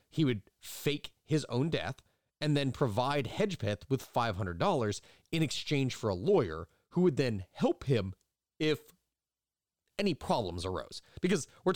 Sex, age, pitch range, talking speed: male, 30-49, 105-150 Hz, 145 wpm